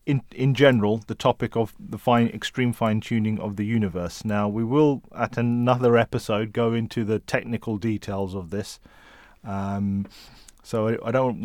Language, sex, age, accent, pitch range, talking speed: English, male, 30-49, British, 105-125 Hz, 170 wpm